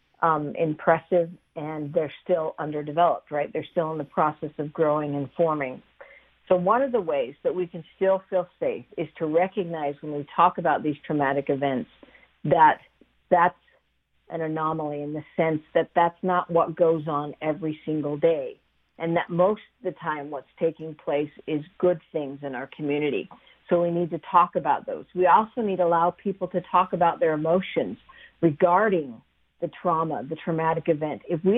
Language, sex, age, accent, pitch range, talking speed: English, female, 50-69, American, 155-190 Hz, 180 wpm